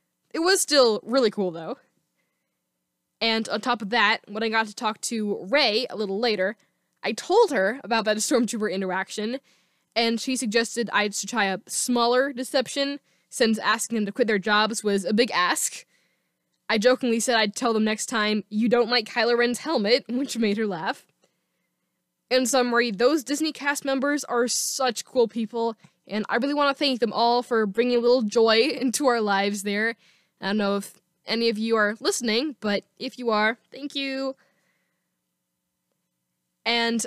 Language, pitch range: English, 210-255 Hz